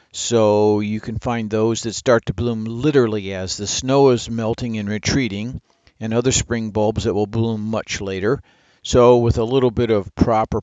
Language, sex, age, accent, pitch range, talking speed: English, male, 50-69, American, 105-120 Hz, 185 wpm